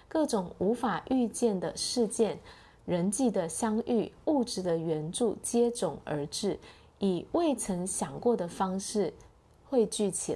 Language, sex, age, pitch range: Chinese, female, 20-39, 165-230 Hz